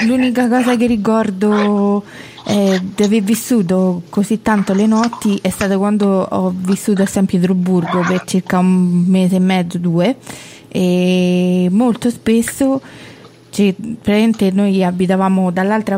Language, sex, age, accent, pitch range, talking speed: Italian, female, 20-39, native, 180-210 Hz, 130 wpm